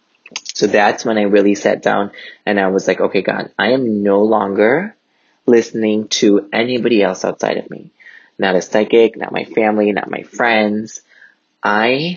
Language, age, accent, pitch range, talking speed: English, 20-39, American, 95-110 Hz, 170 wpm